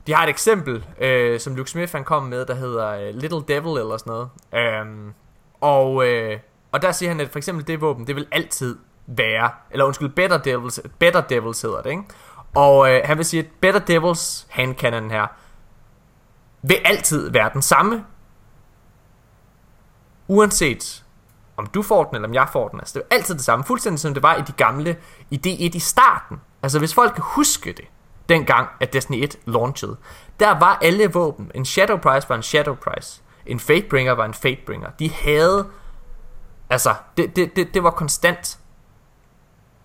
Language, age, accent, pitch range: Danish, 20-39, native, 120-170 Hz